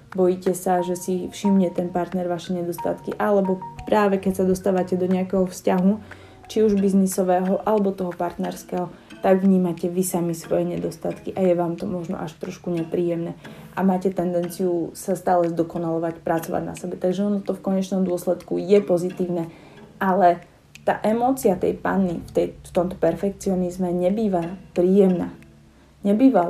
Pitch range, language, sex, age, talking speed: 170-190 Hz, Slovak, female, 20-39, 150 wpm